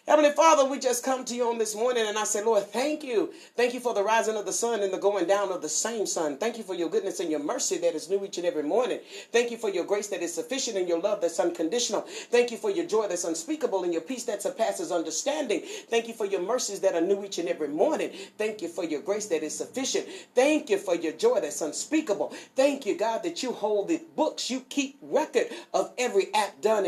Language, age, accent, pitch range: English, 40-59, American, 200-285 Hz